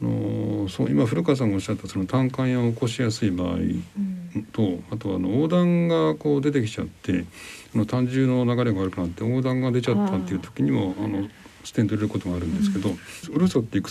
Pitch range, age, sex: 95-135 Hz, 60-79, male